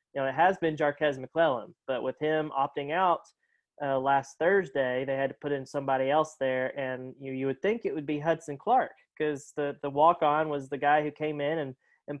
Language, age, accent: English, 20-39, American